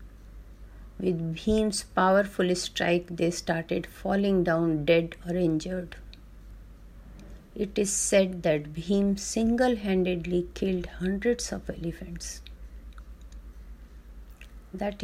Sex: female